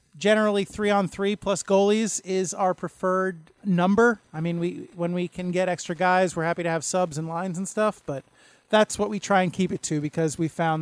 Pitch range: 170-200 Hz